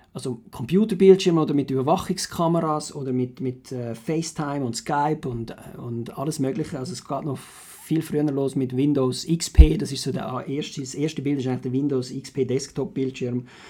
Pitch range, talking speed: 135-175 Hz, 175 wpm